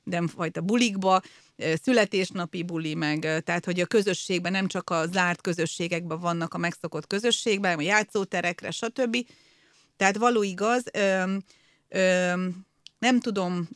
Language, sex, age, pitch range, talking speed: Hungarian, female, 30-49, 175-200 Hz, 115 wpm